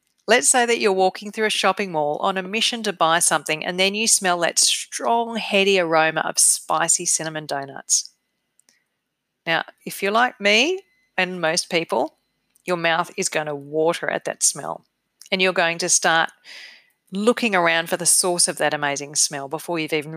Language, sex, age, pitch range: English, female, 40-59, 165-220 Hz